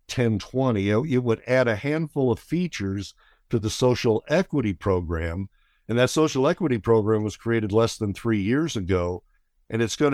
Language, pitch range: English, 105-125 Hz